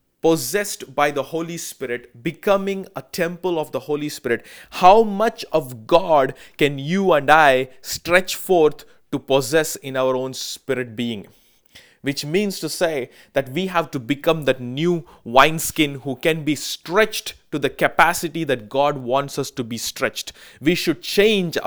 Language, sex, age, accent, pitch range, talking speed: English, male, 20-39, Indian, 135-170 Hz, 160 wpm